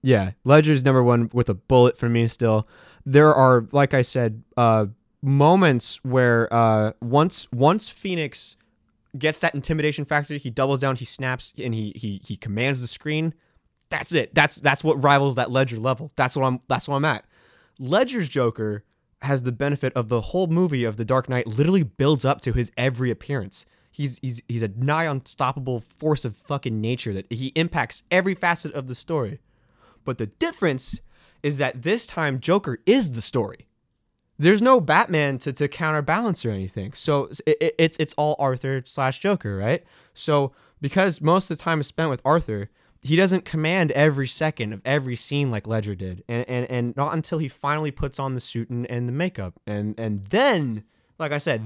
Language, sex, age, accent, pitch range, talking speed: English, male, 20-39, American, 120-155 Hz, 190 wpm